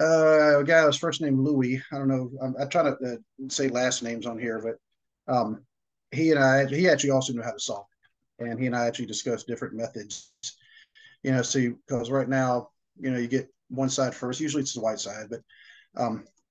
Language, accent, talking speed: English, American, 220 wpm